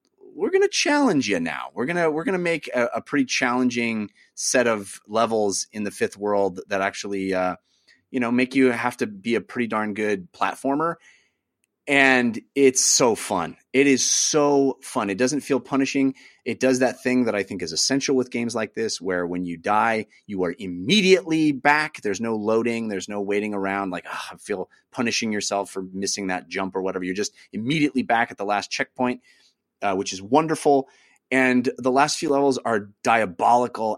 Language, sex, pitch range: English, male, 100-135 Hz